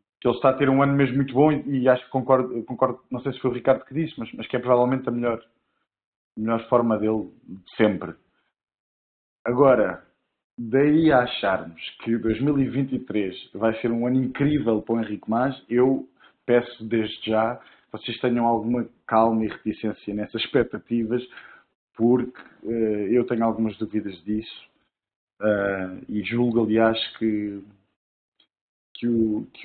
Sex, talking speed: male, 155 wpm